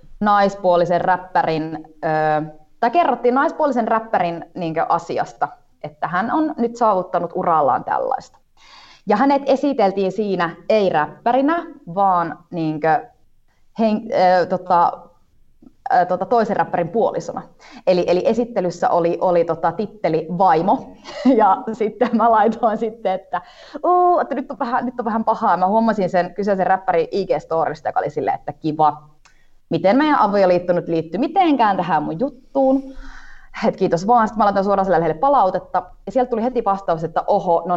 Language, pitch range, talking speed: Finnish, 165-240 Hz, 120 wpm